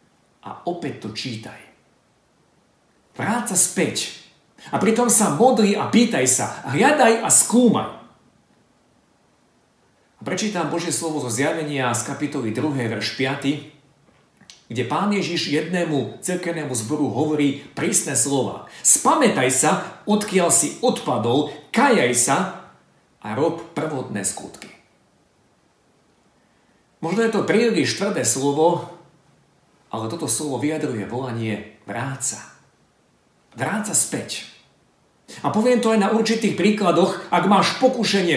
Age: 50-69